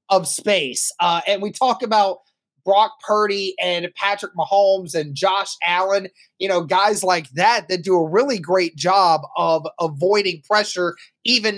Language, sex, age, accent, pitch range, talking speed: English, male, 20-39, American, 180-230 Hz, 155 wpm